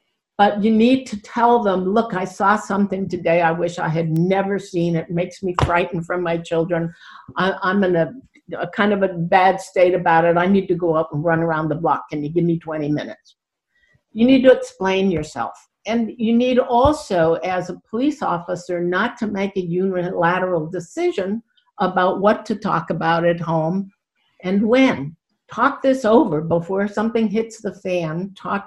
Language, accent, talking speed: English, American, 185 wpm